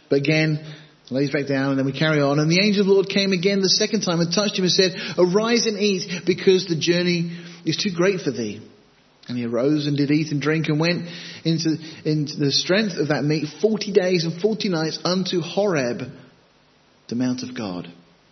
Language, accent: English, British